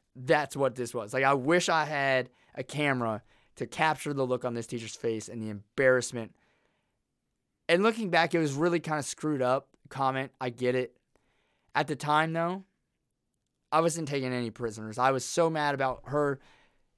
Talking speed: 180 wpm